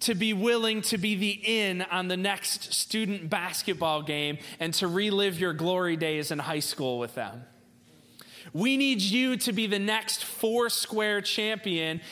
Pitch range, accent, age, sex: 155-215 Hz, American, 30-49, male